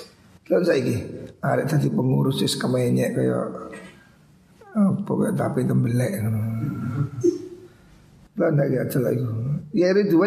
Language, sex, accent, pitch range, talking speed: Indonesian, male, native, 125-165 Hz, 115 wpm